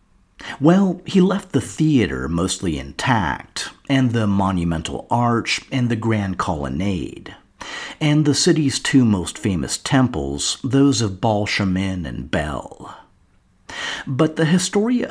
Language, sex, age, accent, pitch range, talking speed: English, male, 50-69, American, 90-135 Hz, 120 wpm